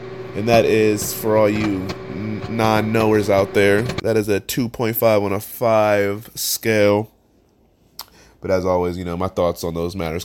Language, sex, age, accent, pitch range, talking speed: English, male, 20-39, American, 100-115 Hz, 160 wpm